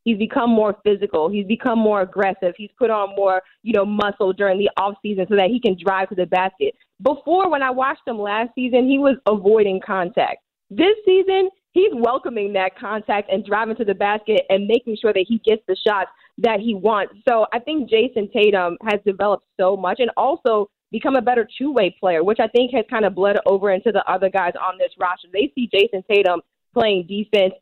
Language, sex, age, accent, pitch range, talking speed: English, female, 20-39, American, 190-230 Hz, 210 wpm